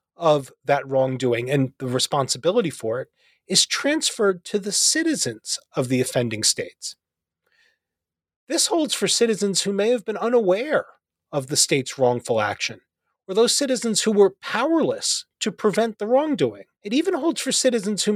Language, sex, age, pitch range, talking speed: English, male, 30-49, 175-285 Hz, 155 wpm